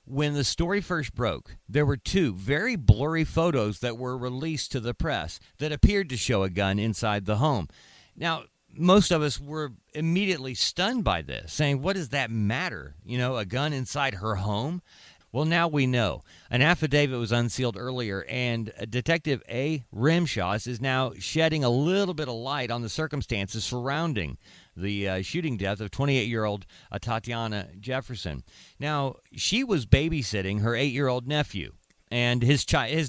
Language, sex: English, male